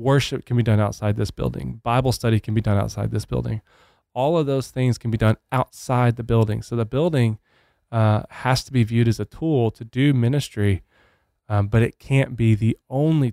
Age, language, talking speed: 20-39, English, 205 wpm